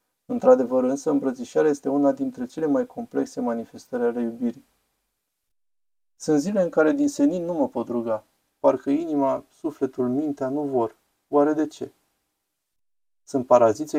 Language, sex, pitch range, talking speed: Romanian, male, 120-145 Hz, 140 wpm